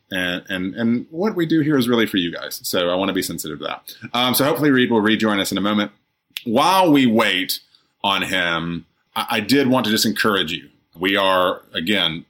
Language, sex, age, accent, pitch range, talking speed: English, male, 30-49, American, 110-170 Hz, 225 wpm